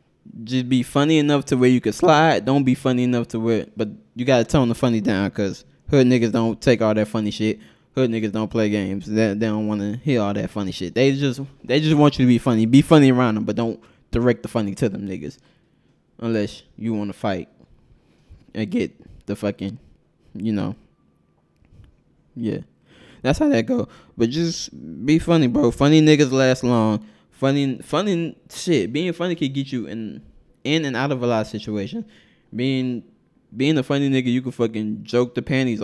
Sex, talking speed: male, 200 wpm